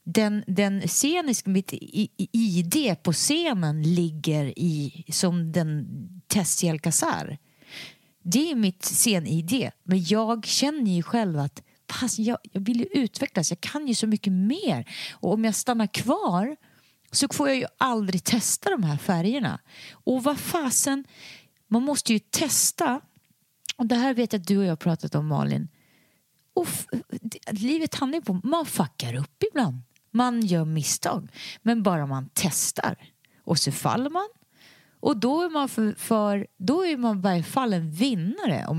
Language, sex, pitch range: English, female, 165-245 Hz